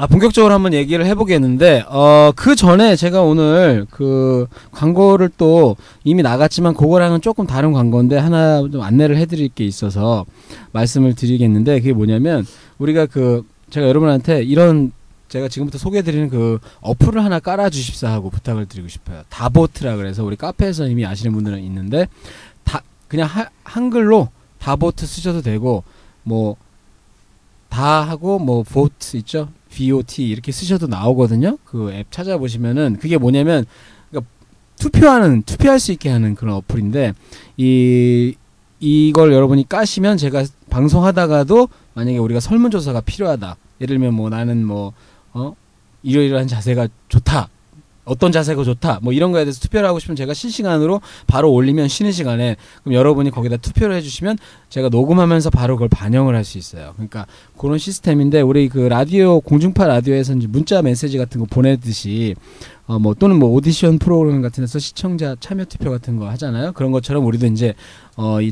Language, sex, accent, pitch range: Korean, male, native, 115-160 Hz